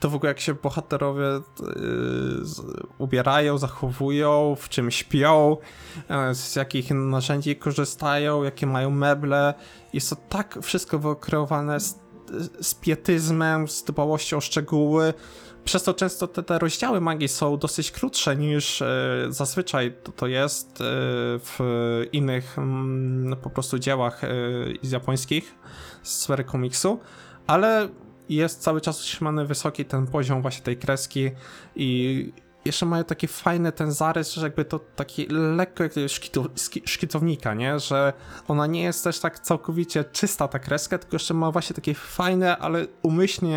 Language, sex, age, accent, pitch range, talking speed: Polish, male, 20-39, native, 130-160 Hz, 135 wpm